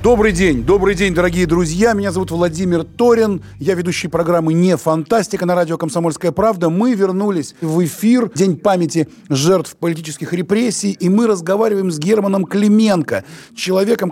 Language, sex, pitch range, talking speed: Russian, male, 155-200 Hz, 150 wpm